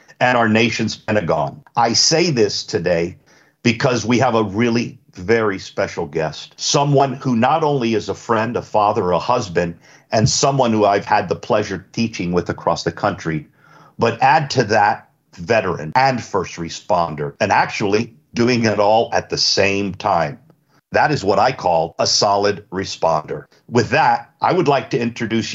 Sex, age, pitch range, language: male, 50-69, 100-125 Hz, English